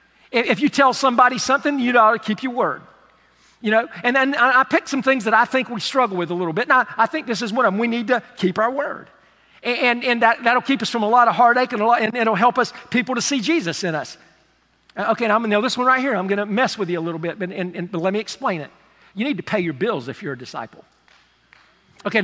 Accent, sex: American, male